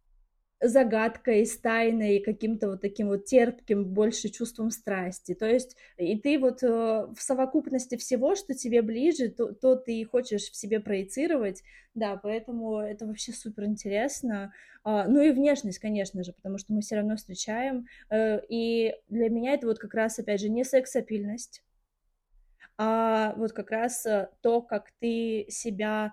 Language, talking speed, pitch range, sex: Russian, 150 wpm, 205-245 Hz, female